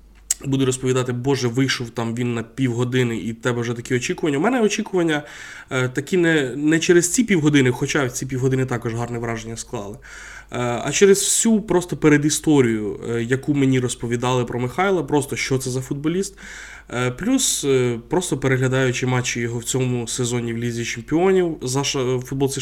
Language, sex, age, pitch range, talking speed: Ukrainian, male, 20-39, 120-150 Hz, 170 wpm